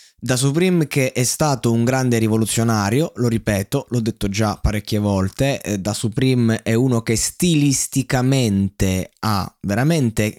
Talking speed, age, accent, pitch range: 140 wpm, 20-39, native, 110-140 Hz